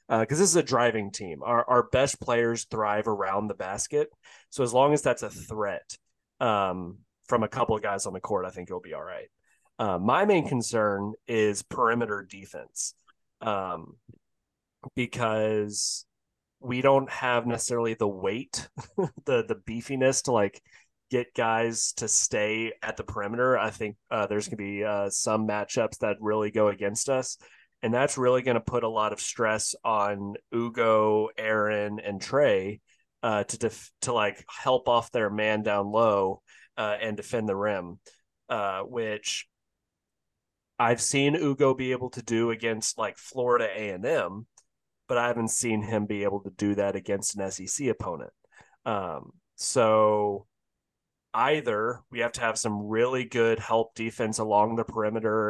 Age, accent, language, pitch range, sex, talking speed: 30-49, American, English, 105-120 Hz, male, 165 wpm